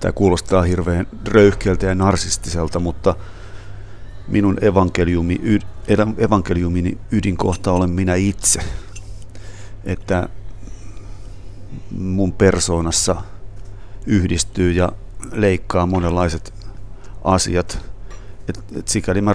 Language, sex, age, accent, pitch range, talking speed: Finnish, male, 30-49, native, 85-100 Hz, 80 wpm